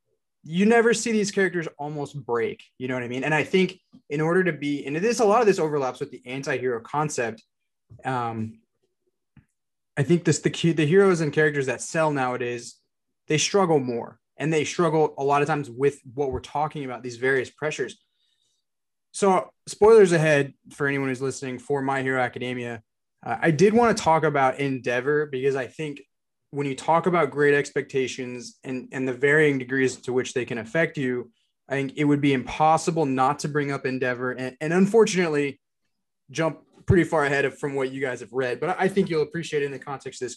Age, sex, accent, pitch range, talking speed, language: 20-39, male, American, 130-160 Hz, 200 wpm, English